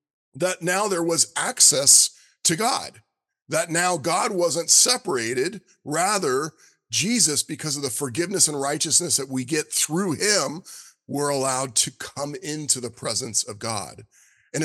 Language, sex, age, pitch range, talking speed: English, male, 40-59, 140-190 Hz, 145 wpm